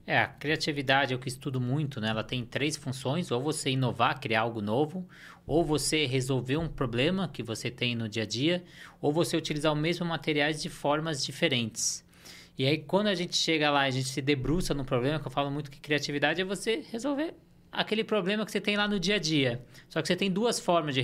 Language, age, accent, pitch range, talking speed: Portuguese, 20-39, Brazilian, 135-175 Hz, 230 wpm